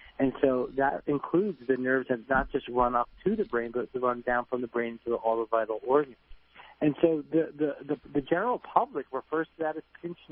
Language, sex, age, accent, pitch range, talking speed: English, male, 50-69, American, 125-155 Hz, 235 wpm